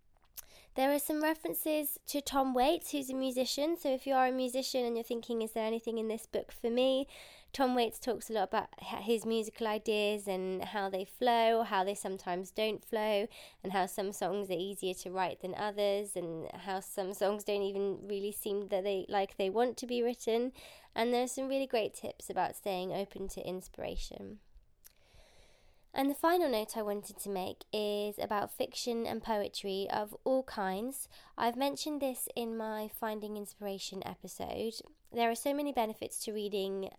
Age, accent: 20-39, British